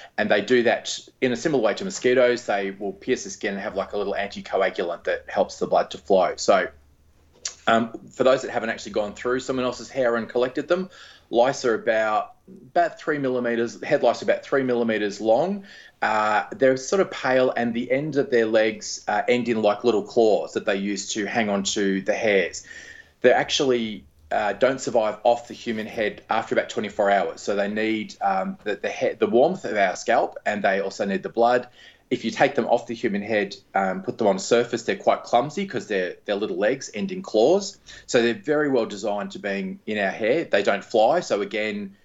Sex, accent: male, Australian